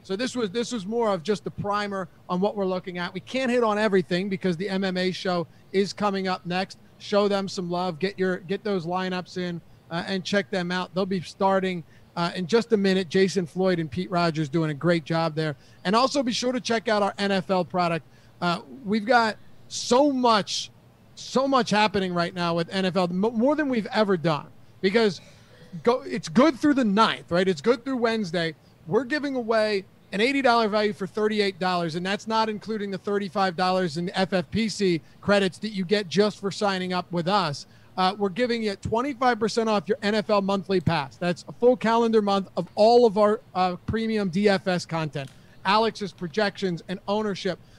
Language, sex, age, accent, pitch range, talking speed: English, male, 30-49, American, 180-215 Hz, 190 wpm